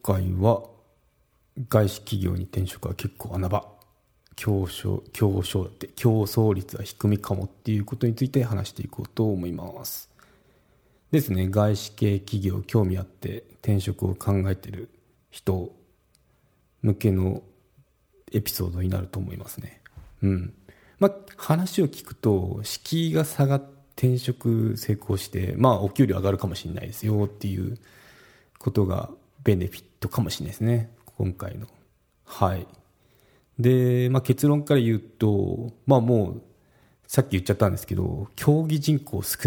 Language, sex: Japanese, male